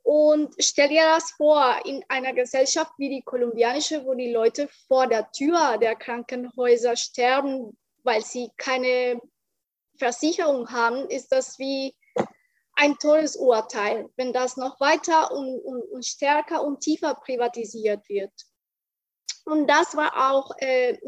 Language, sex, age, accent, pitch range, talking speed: German, female, 20-39, German, 255-315 Hz, 135 wpm